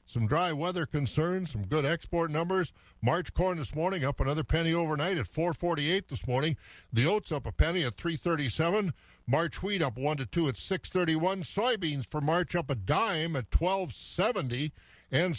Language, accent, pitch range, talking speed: English, American, 130-165 Hz, 170 wpm